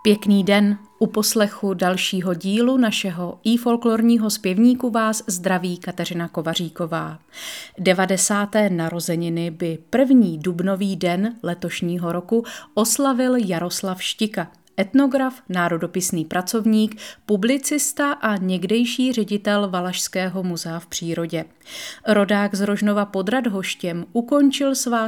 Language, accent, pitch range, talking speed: Czech, native, 180-225 Hz, 105 wpm